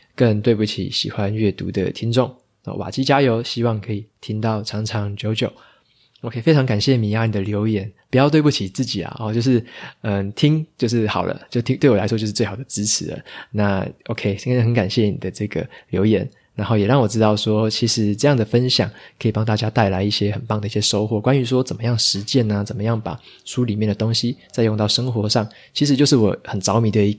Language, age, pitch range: Chinese, 20-39, 105-125 Hz